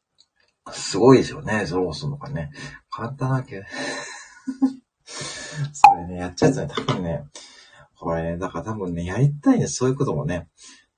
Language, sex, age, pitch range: Japanese, male, 40-59, 130-165 Hz